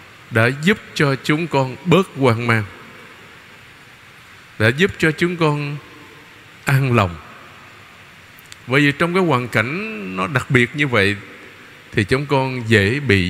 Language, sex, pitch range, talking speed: Vietnamese, male, 110-150 Hz, 140 wpm